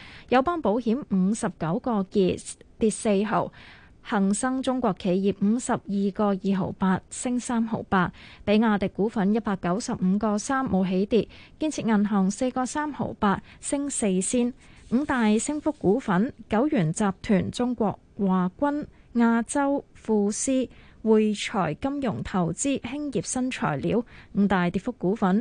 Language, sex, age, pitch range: Chinese, female, 20-39, 195-240 Hz